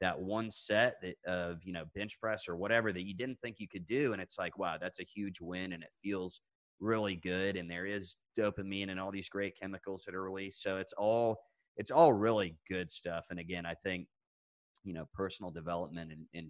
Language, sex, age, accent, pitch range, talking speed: English, male, 30-49, American, 85-100 Hz, 220 wpm